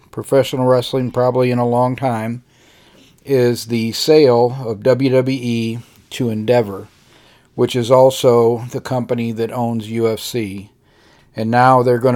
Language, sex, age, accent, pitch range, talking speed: English, male, 40-59, American, 115-130 Hz, 130 wpm